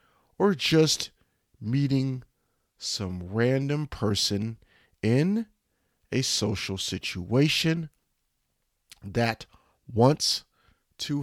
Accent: American